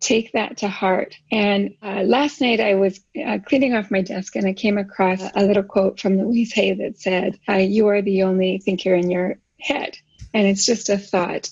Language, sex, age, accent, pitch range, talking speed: English, female, 30-49, American, 195-250 Hz, 215 wpm